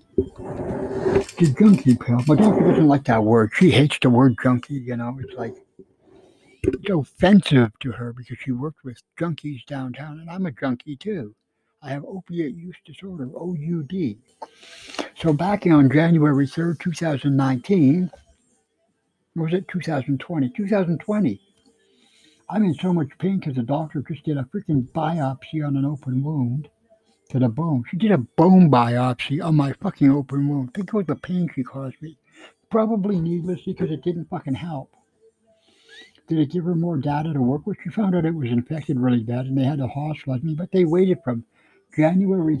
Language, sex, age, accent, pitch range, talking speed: English, male, 60-79, American, 130-175 Hz, 180 wpm